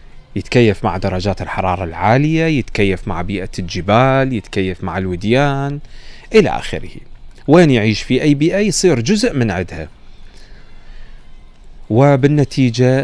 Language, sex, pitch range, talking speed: Arabic, male, 100-130 Hz, 110 wpm